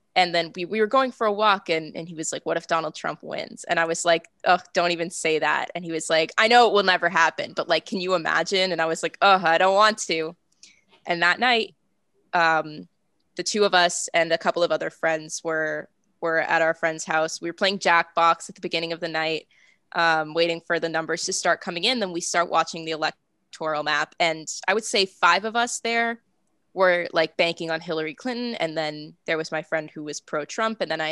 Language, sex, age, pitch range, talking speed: English, female, 10-29, 165-195 Hz, 240 wpm